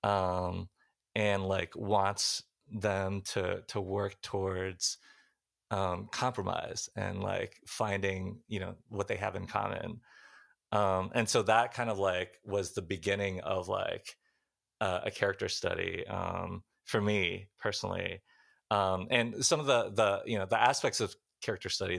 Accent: American